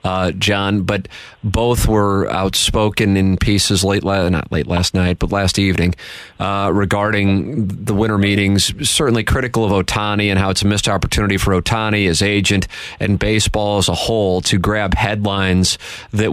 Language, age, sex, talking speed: English, 30-49, male, 165 wpm